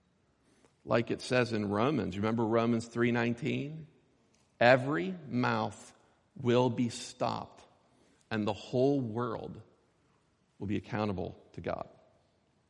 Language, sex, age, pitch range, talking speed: English, male, 50-69, 110-140 Hz, 105 wpm